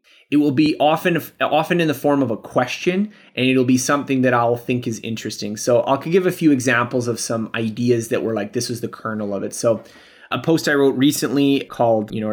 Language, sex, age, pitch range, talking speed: English, male, 20-39, 115-145 Hz, 230 wpm